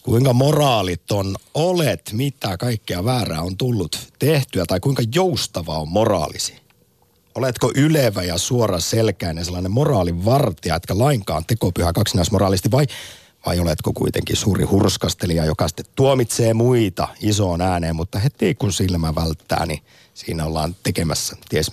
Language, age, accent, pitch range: Finnish, 50-69, native, 90-125 Hz